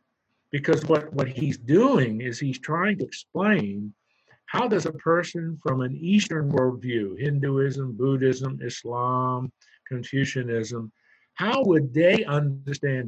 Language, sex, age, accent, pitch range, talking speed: English, male, 50-69, American, 130-185 Hz, 120 wpm